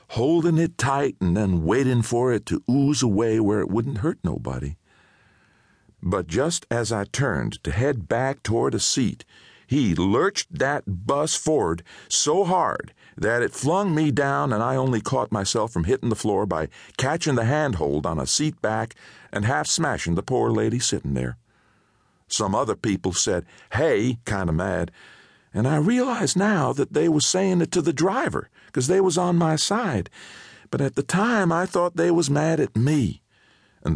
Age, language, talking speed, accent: 50-69, English, 180 wpm, American